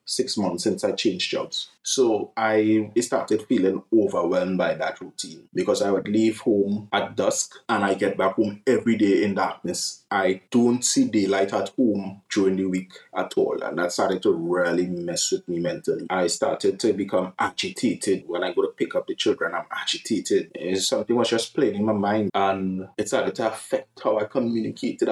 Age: 20-39